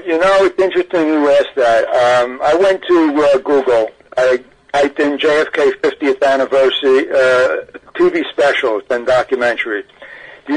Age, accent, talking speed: 60-79, American, 150 wpm